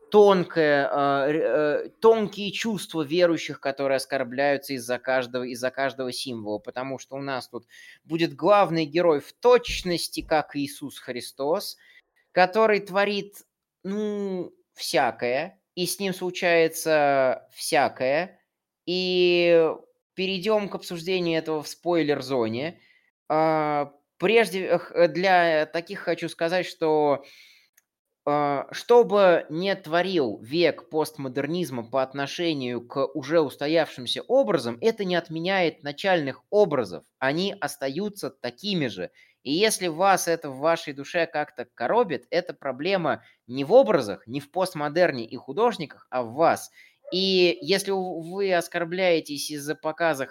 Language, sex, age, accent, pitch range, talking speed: Russian, male, 20-39, native, 140-185 Hz, 115 wpm